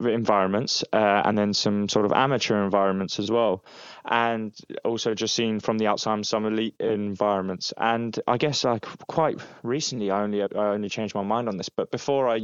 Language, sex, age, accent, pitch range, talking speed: English, male, 20-39, British, 105-125 Hz, 195 wpm